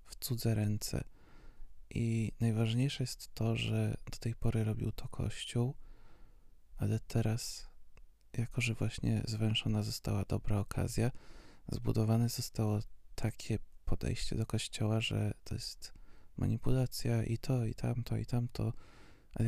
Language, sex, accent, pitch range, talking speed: Polish, male, native, 110-125 Hz, 125 wpm